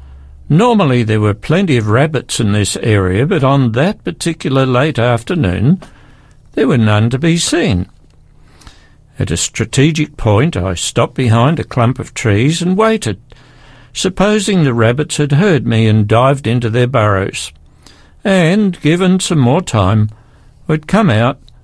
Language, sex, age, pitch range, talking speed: English, male, 60-79, 115-150 Hz, 145 wpm